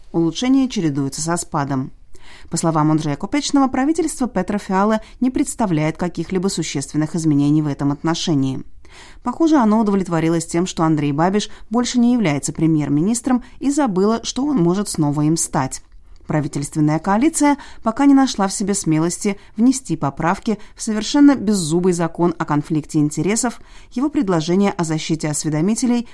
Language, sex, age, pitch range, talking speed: Russian, female, 30-49, 155-220 Hz, 140 wpm